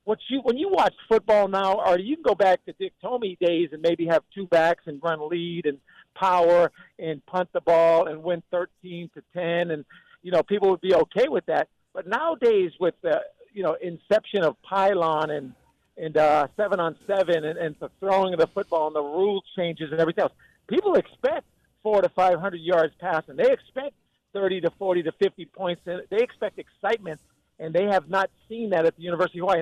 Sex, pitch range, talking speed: male, 165-220 Hz, 210 wpm